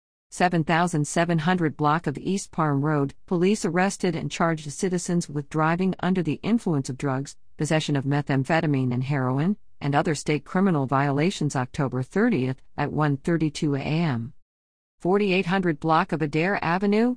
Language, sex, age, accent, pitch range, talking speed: English, female, 50-69, American, 145-190 Hz, 135 wpm